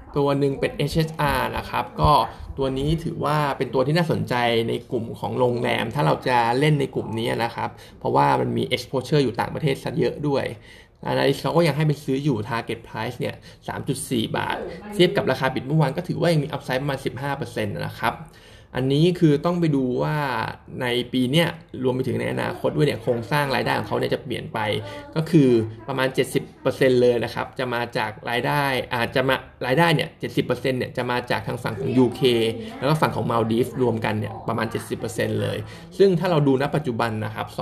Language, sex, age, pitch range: Thai, male, 20-39, 115-145 Hz